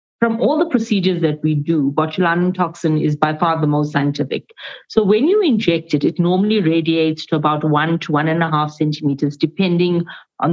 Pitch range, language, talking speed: 155-200 Hz, English, 195 wpm